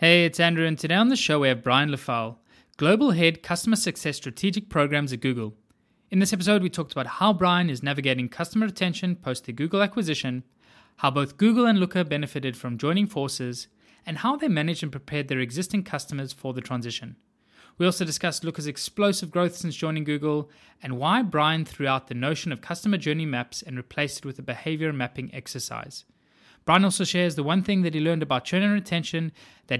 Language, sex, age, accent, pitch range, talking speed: English, male, 20-39, Australian, 130-175 Hz, 200 wpm